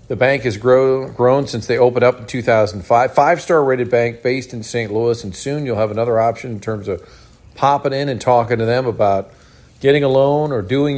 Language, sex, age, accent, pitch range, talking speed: English, male, 50-69, American, 110-140 Hz, 215 wpm